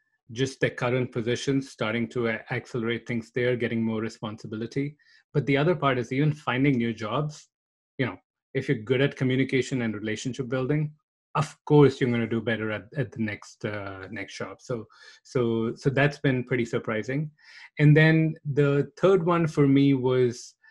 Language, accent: English, Indian